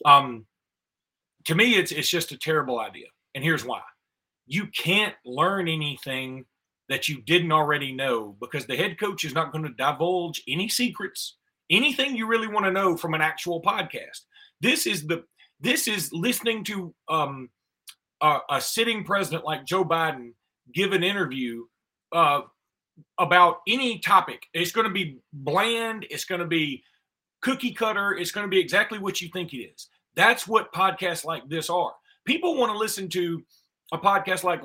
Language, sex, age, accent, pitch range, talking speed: English, male, 30-49, American, 160-215 Hz, 170 wpm